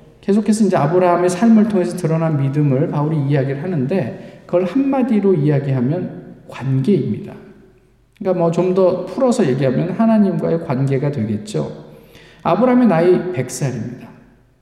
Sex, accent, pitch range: male, native, 135-205 Hz